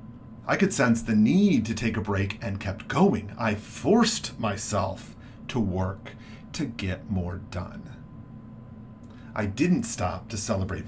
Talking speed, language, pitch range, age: 145 wpm, English, 110-125 Hz, 40-59